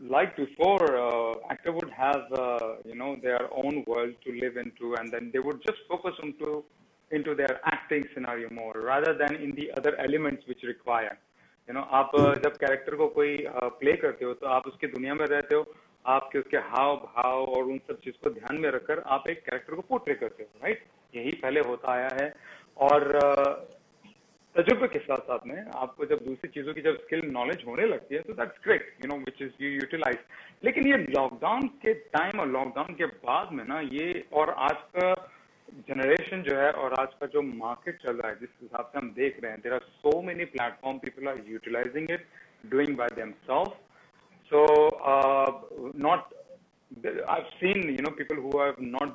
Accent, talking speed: native, 200 wpm